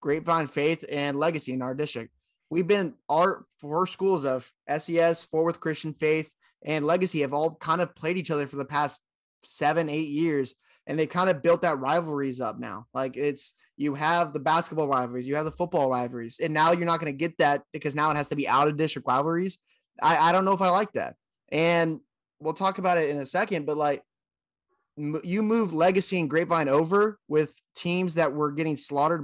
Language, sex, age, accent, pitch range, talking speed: English, male, 20-39, American, 145-180 Hz, 205 wpm